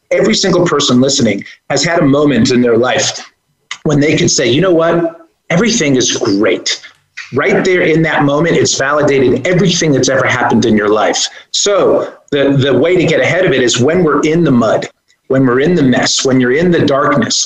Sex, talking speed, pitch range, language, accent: male, 205 wpm, 130-165 Hz, English, American